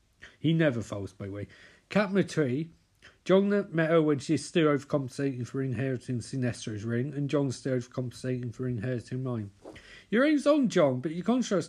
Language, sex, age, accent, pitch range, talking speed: English, male, 50-69, British, 115-155 Hz, 165 wpm